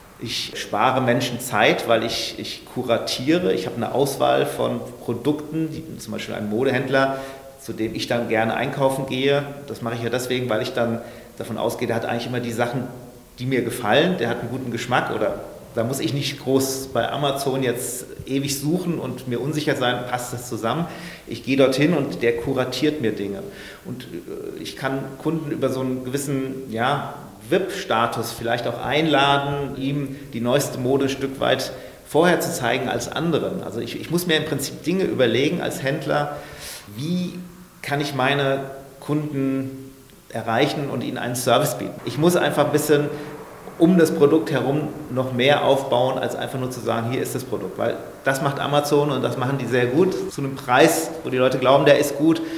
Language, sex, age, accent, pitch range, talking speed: German, male, 40-59, German, 120-145 Hz, 185 wpm